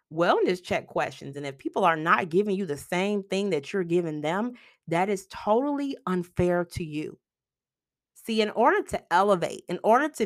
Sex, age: female, 30-49